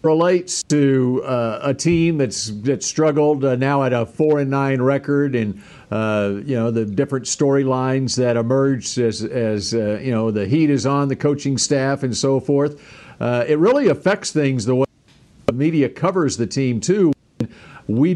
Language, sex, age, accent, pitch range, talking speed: English, male, 50-69, American, 120-150 Hz, 180 wpm